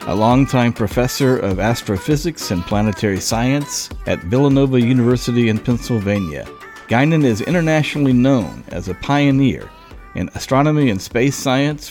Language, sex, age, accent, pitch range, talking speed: English, male, 50-69, American, 105-130 Hz, 125 wpm